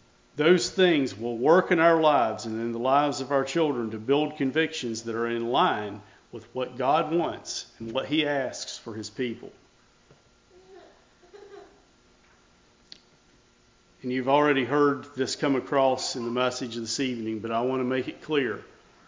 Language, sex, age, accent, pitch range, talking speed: English, male, 50-69, American, 125-180 Hz, 160 wpm